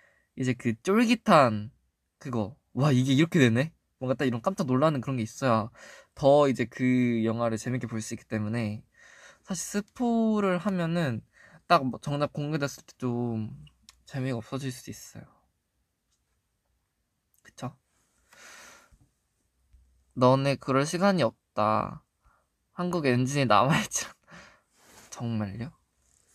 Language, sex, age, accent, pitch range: Korean, male, 20-39, native, 115-165 Hz